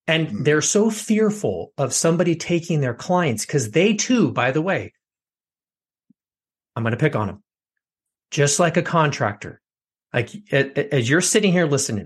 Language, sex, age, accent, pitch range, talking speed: English, male, 30-49, American, 125-170 Hz, 155 wpm